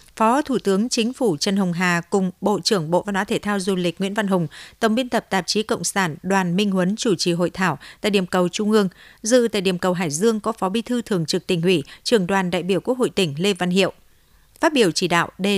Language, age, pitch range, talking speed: Vietnamese, 60-79, 180-225 Hz, 265 wpm